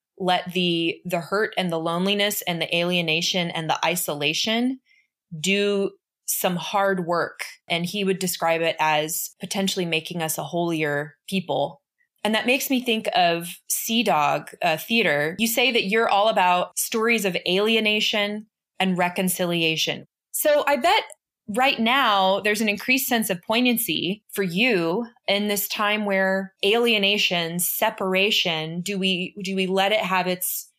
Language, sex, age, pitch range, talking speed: English, female, 20-39, 175-215 Hz, 150 wpm